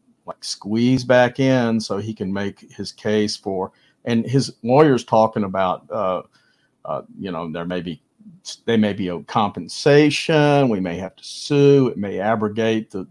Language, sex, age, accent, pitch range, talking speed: English, male, 50-69, American, 105-130 Hz, 170 wpm